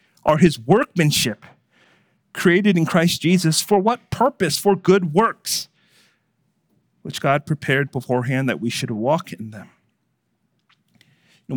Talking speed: 125 wpm